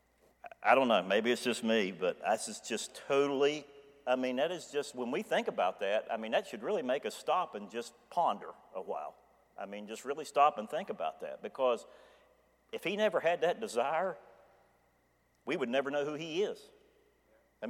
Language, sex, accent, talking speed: English, male, American, 195 wpm